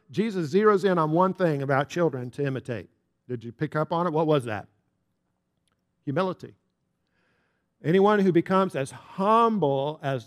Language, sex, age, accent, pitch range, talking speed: English, male, 50-69, American, 140-190 Hz, 150 wpm